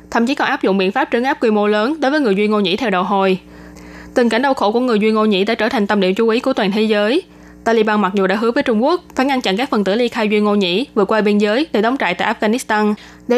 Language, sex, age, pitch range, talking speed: Vietnamese, female, 20-39, 200-250 Hz, 315 wpm